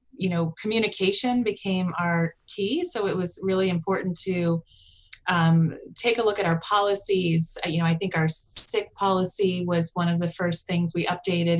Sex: female